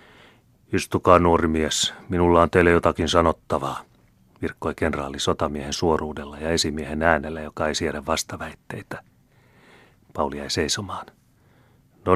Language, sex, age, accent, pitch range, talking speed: Finnish, male, 30-49, native, 80-95 Hz, 115 wpm